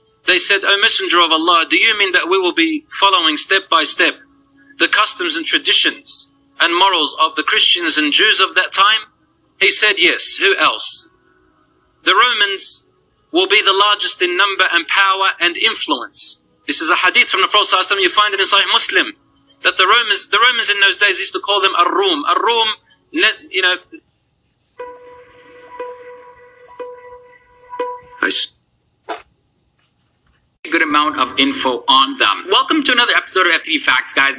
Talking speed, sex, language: 160 wpm, male, English